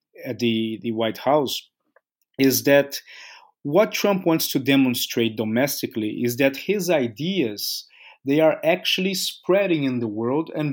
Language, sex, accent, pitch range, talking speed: English, male, Brazilian, 130-160 Hz, 140 wpm